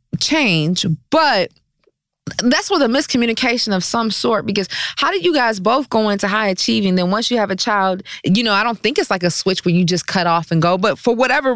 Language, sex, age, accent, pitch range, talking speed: English, female, 20-39, American, 195-265 Hz, 230 wpm